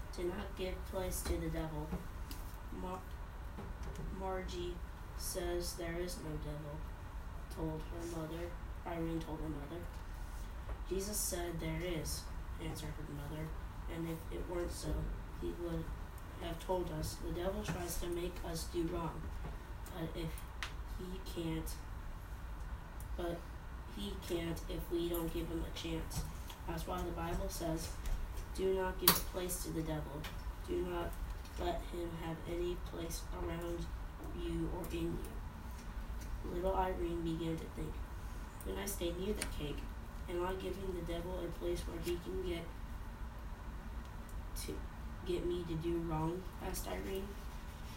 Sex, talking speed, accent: female, 145 wpm, American